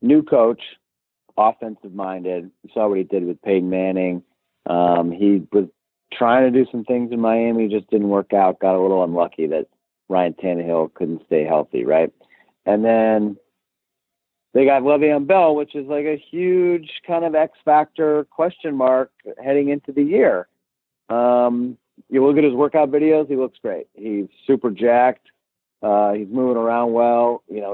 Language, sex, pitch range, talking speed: English, male, 105-145 Hz, 165 wpm